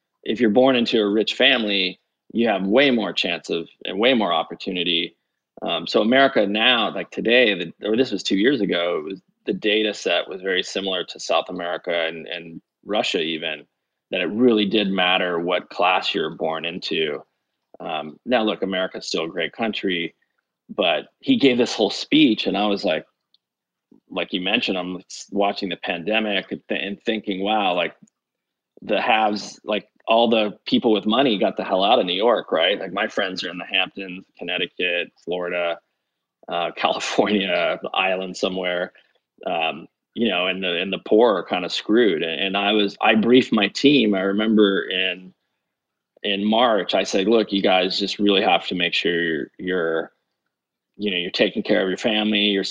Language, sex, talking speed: English, male, 185 wpm